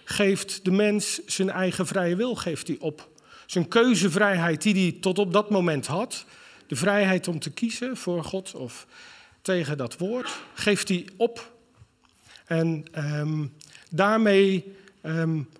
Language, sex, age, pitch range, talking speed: Dutch, male, 40-59, 160-200 Hz, 140 wpm